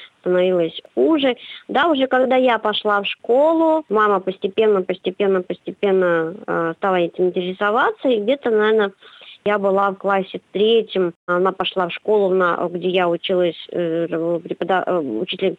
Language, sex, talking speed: Russian, male, 130 wpm